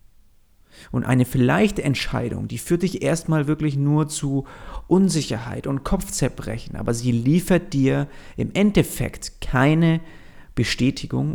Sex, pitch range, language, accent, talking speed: male, 125-160 Hz, German, German, 115 wpm